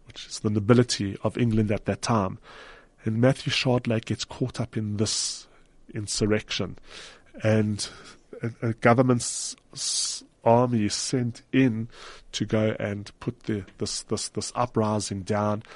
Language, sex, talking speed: English, male, 135 wpm